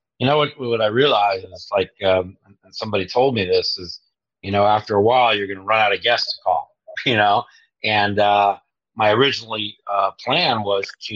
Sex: male